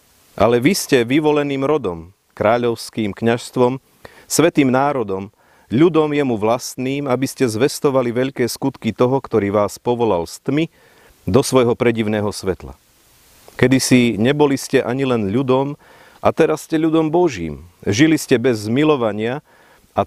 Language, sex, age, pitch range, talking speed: Slovak, male, 40-59, 100-130 Hz, 130 wpm